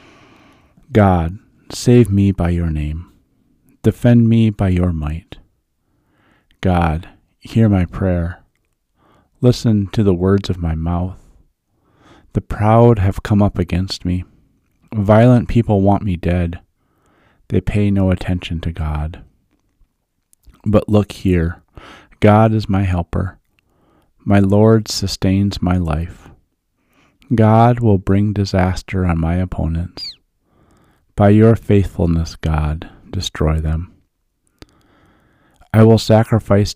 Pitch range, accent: 85-105 Hz, American